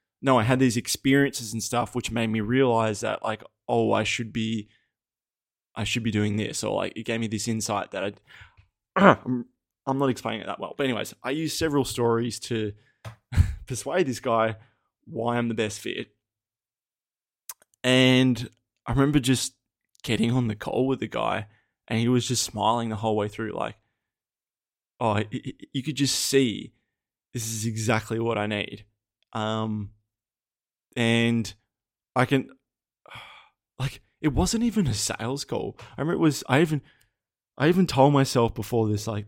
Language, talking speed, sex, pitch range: English, 170 wpm, male, 110-125 Hz